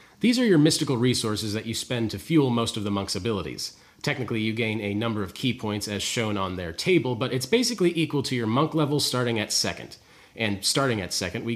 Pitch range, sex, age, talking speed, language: 100-130 Hz, male, 30-49, 230 wpm, English